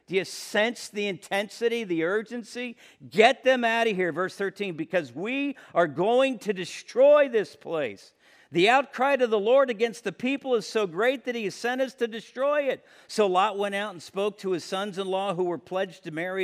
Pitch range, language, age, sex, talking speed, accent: 190-260 Hz, English, 50-69, male, 200 wpm, American